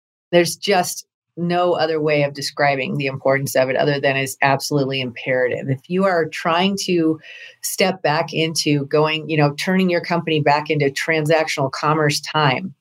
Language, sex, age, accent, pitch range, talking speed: English, female, 40-59, American, 145-170 Hz, 165 wpm